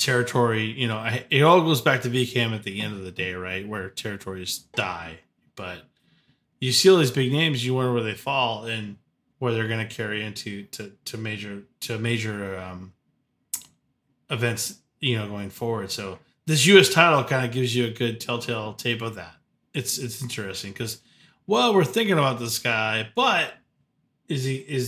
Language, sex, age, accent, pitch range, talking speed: English, male, 20-39, American, 110-140 Hz, 185 wpm